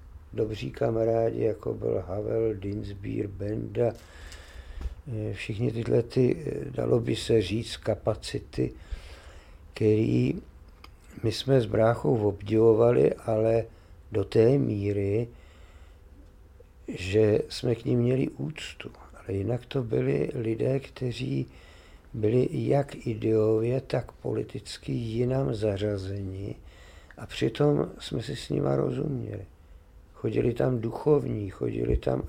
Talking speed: 105 wpm